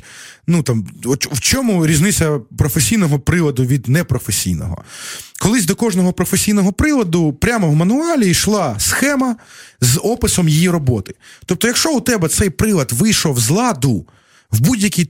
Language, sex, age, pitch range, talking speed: Ukrainian, male, 30-49, 130-185 Hz, 135 wpm